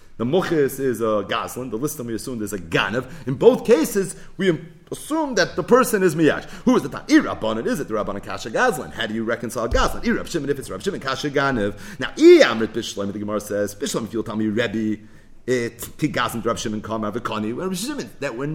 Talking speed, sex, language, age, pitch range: 210 wpm, male, English, 40-59, 125-205 Hz